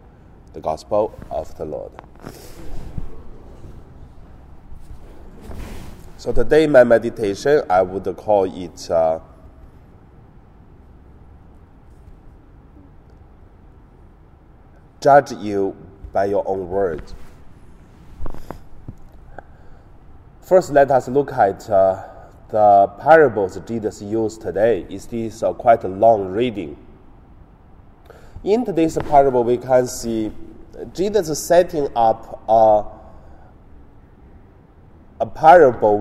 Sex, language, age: male, Chinese, 30-49